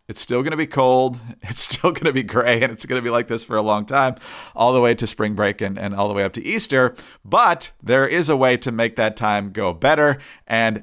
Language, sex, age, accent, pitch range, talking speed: English, male, 40-59, American, 115-150 Hz, 270 wpm